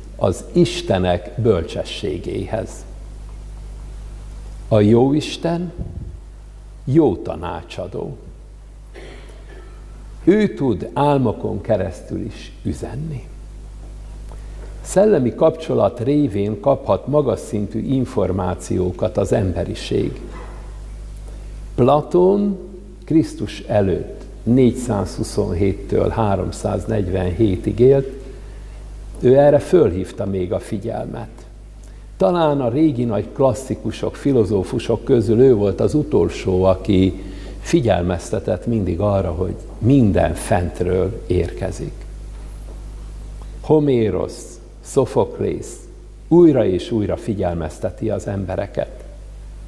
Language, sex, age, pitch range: Hungarian, male, 60-79, 95-130 Hz